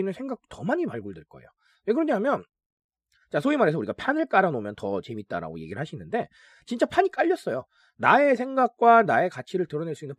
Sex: male